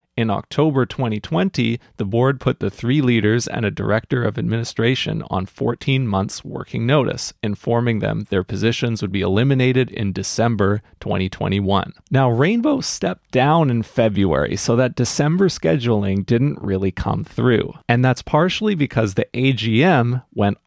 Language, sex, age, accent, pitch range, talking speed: English, male, 30-49, American, 110-140 Hz, 145 wpm